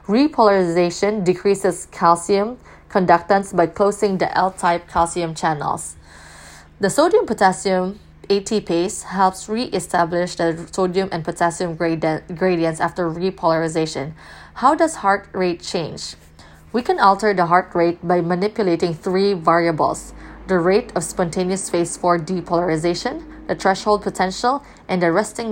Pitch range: 170-200 Hz